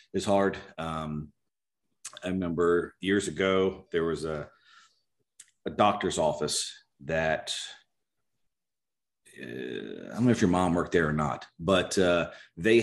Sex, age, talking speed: male, 40-59, 130 wpm